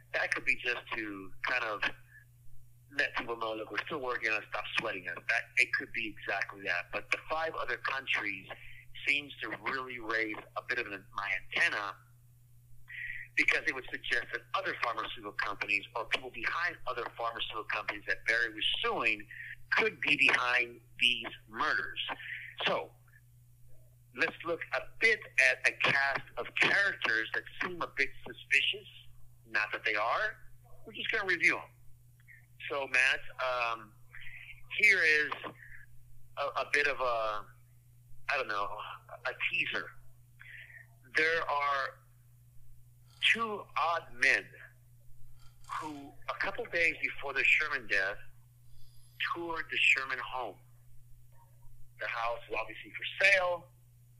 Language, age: English, 50-69